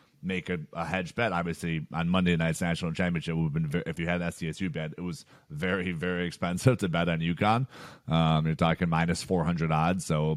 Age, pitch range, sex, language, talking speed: 30-49, 85-95 Hz, male, English, 215 wpm